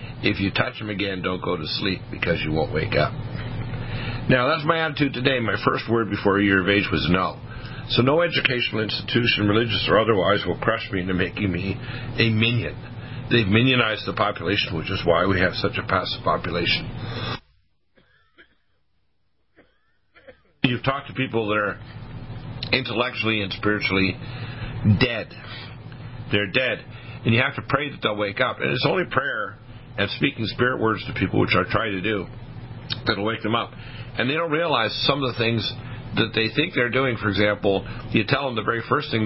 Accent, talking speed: American, 180 wpm